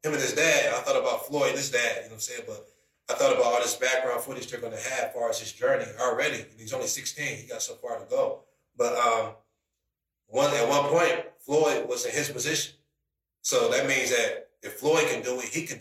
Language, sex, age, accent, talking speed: English, male, 30-49, American, 245 wpm